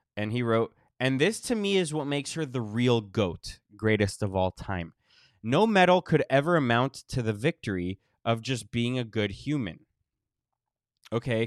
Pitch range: 110-170 Hz